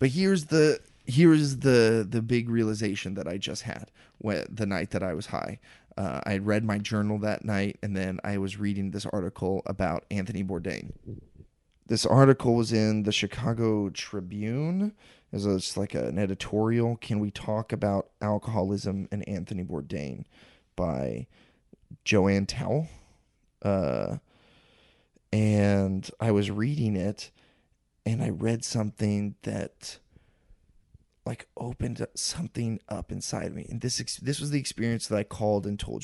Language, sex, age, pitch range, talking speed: English, male, 30-49, 100-120 Hz, 145 wpm